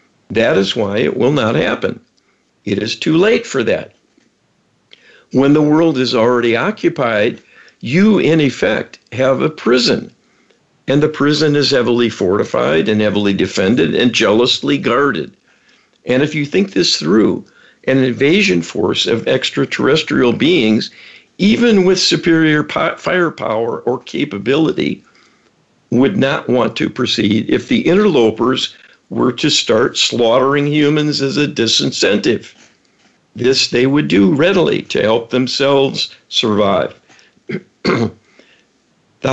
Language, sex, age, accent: English, male, 50-69, American